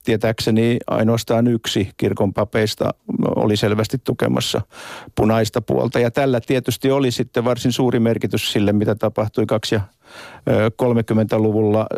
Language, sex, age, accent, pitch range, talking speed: Finnish, male, 50-69, native, 105-120 Hz, 120 wpm